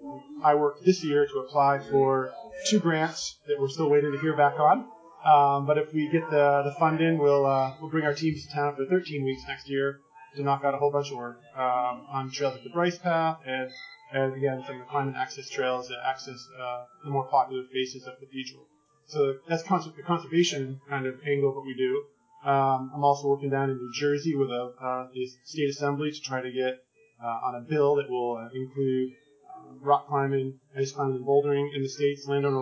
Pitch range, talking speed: 135-155 Hz, 215 wpm